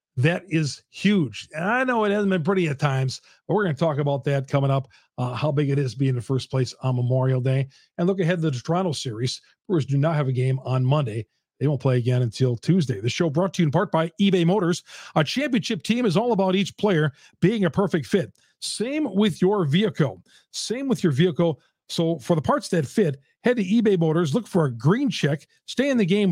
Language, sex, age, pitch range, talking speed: English, male, 40-59, 135-190 Hz, 235 wpm